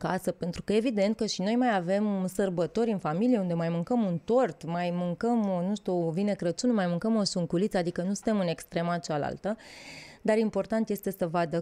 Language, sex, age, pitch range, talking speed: Romanian, female, 20-39, 170-220 Hz, 200 wpm